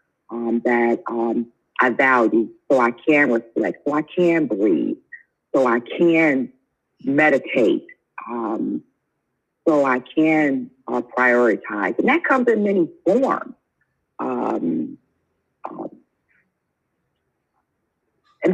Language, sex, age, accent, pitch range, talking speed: English, female, 50-69, American, 120-155 Hz, 105 wpm